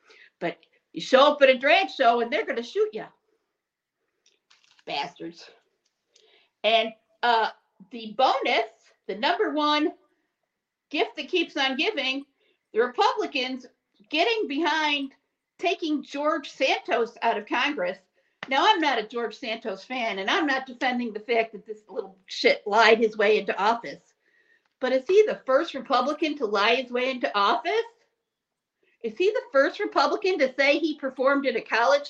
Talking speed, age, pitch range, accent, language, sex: 155 wpm, 50-69, 230-345 Hz, American, English, female